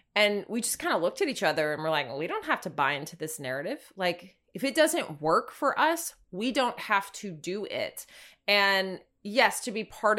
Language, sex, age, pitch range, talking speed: English, female, 20-39, 170-230 Hz, 230 wpm